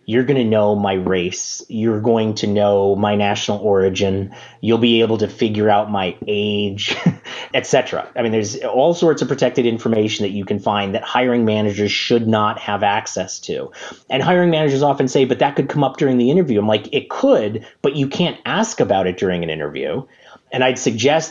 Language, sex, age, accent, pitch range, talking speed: English, male, 30-49, American, 105-130 Hz, 200 wpm